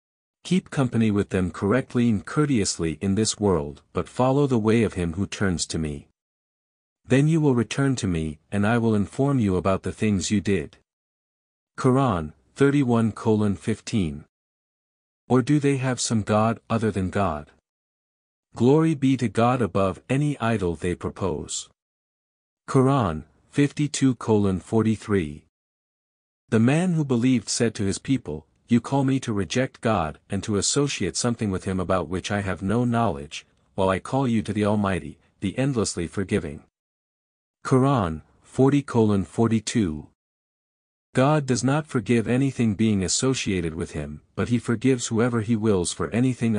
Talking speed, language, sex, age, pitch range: 145 wpm, English, male, 50-69, 90-125 Hz